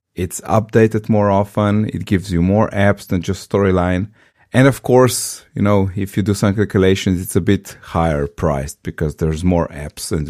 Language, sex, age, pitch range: English, male, 30-49, 85-110 Hz